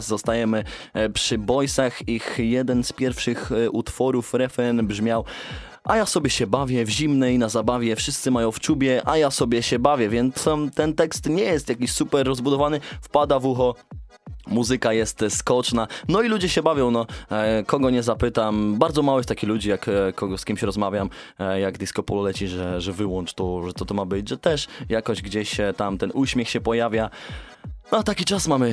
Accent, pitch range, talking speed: native, 105-130 Hz, 185 wpm